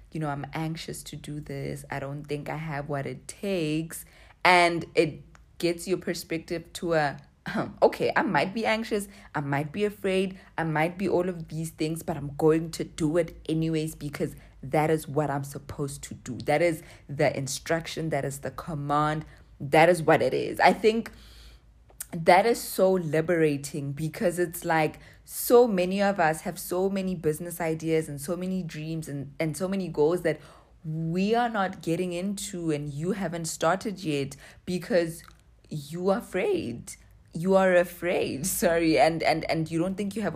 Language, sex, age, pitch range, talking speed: English, female, 20-39, 150-185 Hz, 180 wpm